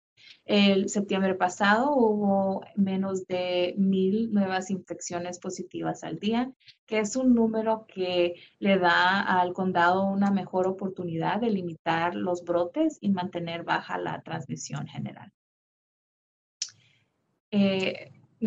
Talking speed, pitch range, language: 115 wpm, 180-210 Hz, English